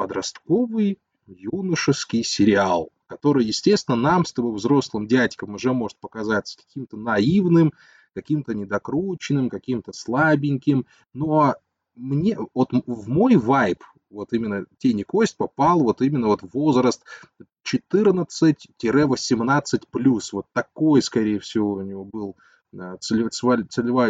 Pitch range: 115-155 Hz